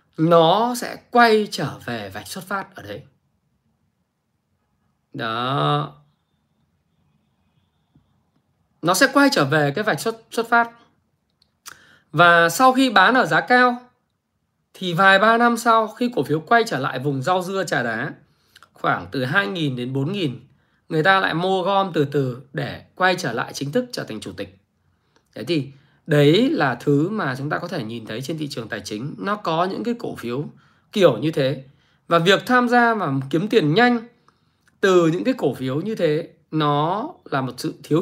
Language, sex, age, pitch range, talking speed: Vietnamese, male, 20-39, 135-195 Hz, 175 wpm